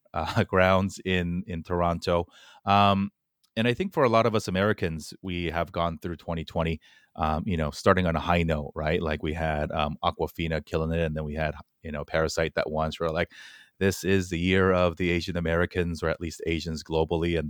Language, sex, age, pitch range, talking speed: English, male, 30-49, 80-95 Hz, 210 wpm